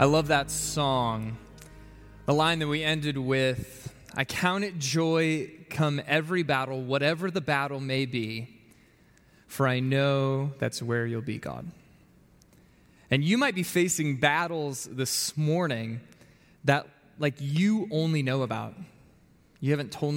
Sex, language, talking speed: male, English, 140 wpm